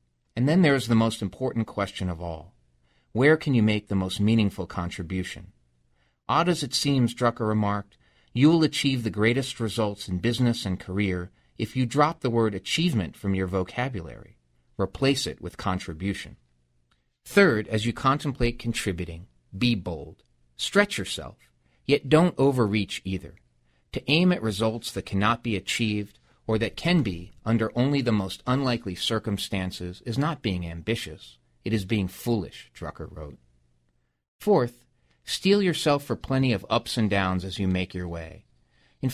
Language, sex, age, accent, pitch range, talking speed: English, male, 40-59, American, 85-125 Hz, 160 wpm